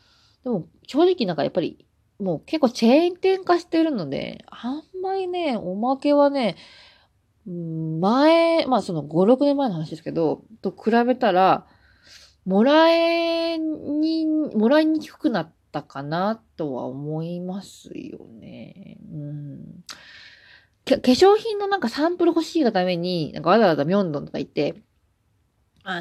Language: Japanese